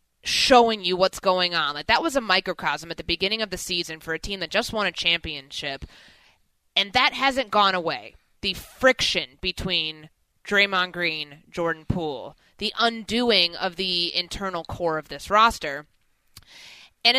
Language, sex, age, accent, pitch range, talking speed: English, female, 20-39, American, 175-235 Hz, 155 wpm